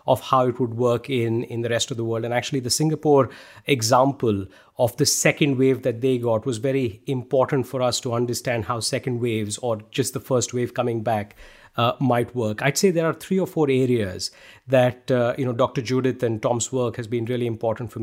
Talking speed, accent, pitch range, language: 220 wpm, Indian, 120-140 Hz, English